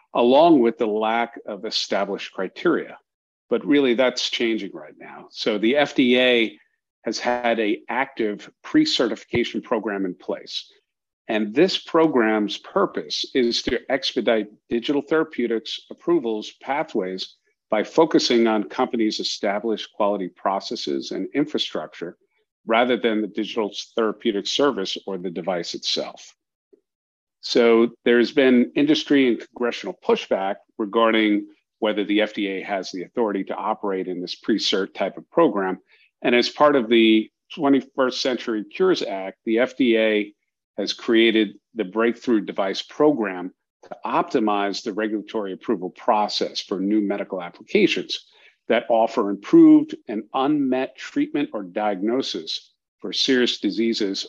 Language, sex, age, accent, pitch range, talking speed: English, male, 50-69, American, 105-145 Hz, 125 wpm